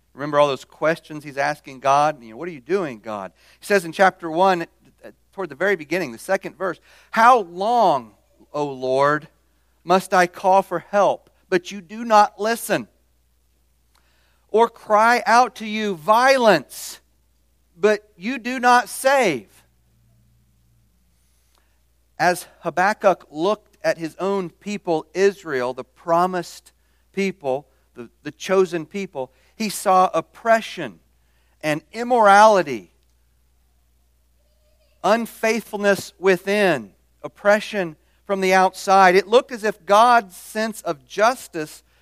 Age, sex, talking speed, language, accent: 40-59, male, 120 wpm, English, American